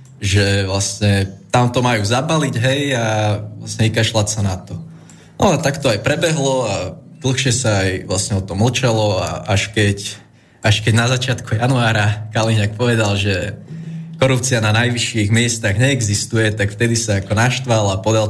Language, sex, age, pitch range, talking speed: Slovak, male, 20-39, 105-120 Hz, 165 wpm